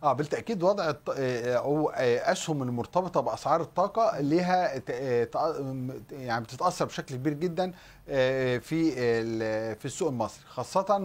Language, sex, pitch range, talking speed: Arabic, male, 120-155 Hz, 100 wpm